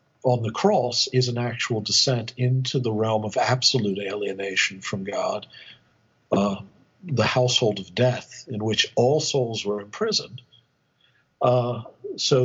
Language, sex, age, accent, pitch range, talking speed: English, male, 60-79, American, 110-130 Hz, 135 wpm